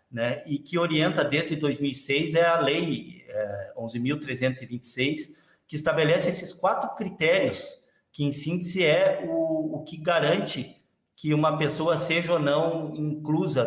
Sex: male